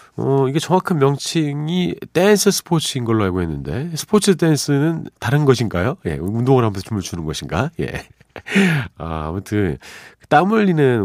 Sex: male